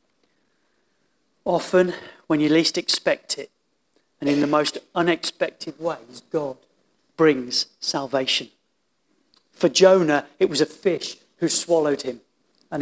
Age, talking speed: 40-59, 115 wpm